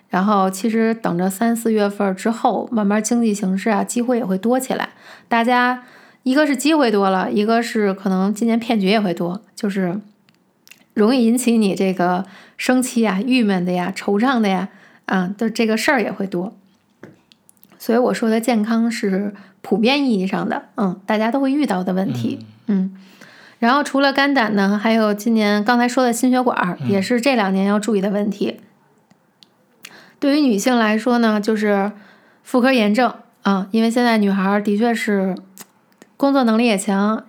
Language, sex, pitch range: Chinese, female, 195-235 Hz